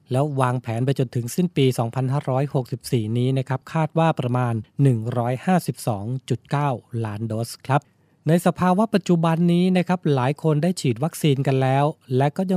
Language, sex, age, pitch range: Thai, male, 20-39, 125-155 Hz